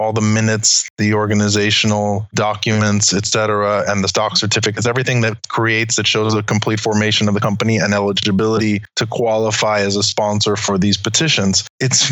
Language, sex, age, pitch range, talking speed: English, male, 20-39, 105-120 Hz, 170 wpm